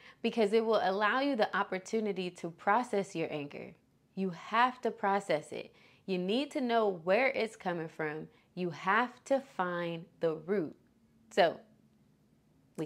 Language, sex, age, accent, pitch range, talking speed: English, female, 20-39, American, 170-225 Hz, 150 wpm